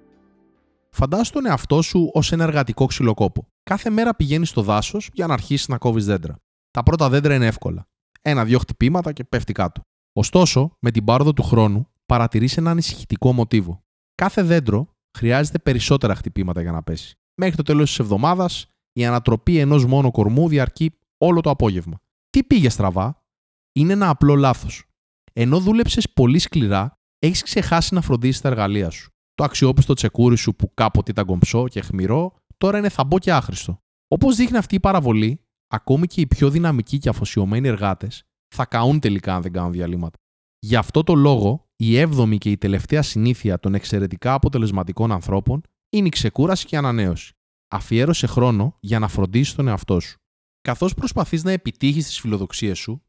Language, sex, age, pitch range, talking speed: Greek, male, 20-39, 105-150 Hz, 165 wpm